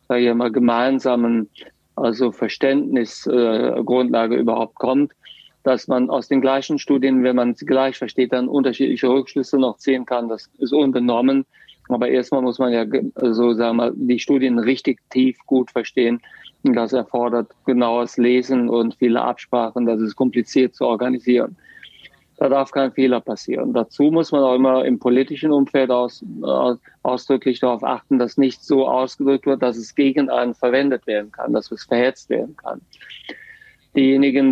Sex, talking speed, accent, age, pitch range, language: male, 160 wpm, German, 40-59, 120-135 Hz, German